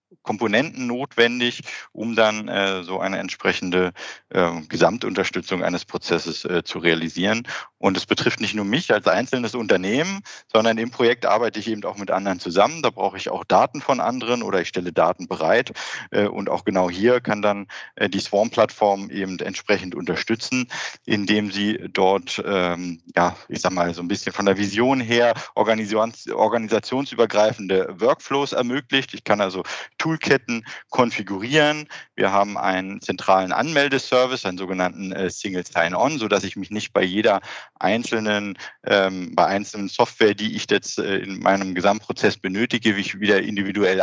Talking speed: 150 wpm